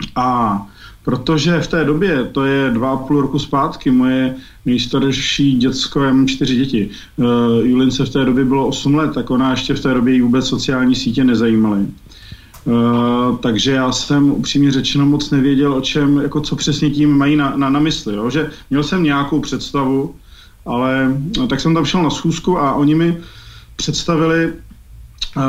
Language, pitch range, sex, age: Slovak, 125-145 Hz, male, 40-59